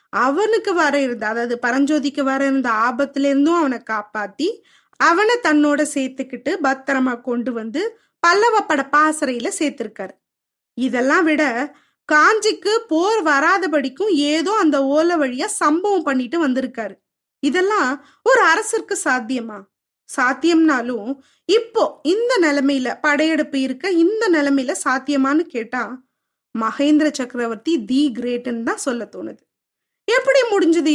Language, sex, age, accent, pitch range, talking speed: Tamil, female, 20-39, native, 265-345 Hz, 105 wpm